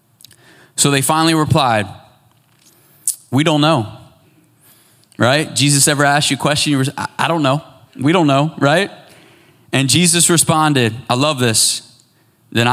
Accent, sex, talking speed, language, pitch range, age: American, male, 140 wpm, English, 125-155 Hz, 20-39